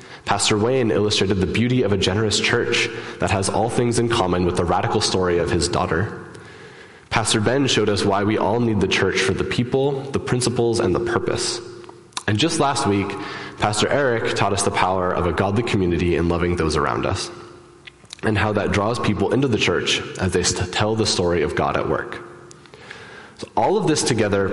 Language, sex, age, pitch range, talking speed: English, male, 20-39, 95-120 Hz, 195 wpm